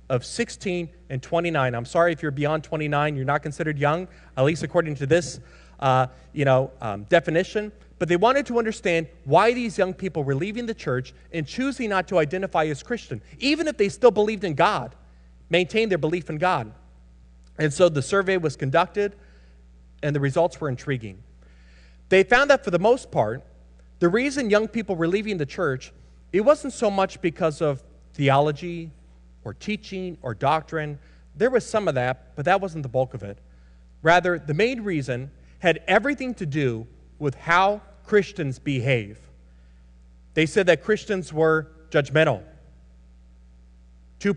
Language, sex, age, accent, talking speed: English, male, 30-49, American, 170 wpm